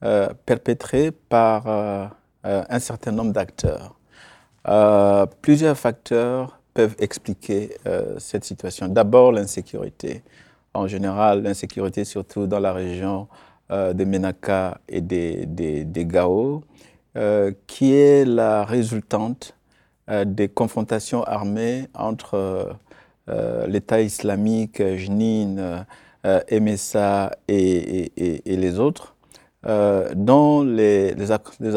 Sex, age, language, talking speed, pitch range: male, 50-69, French, 115 wpm, 95-115 Hz